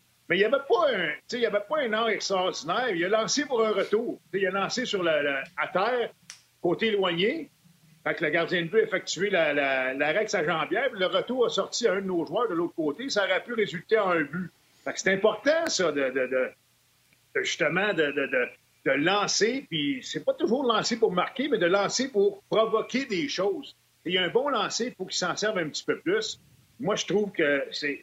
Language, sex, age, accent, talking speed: French, male, 50-69, Canadian, 225 wpm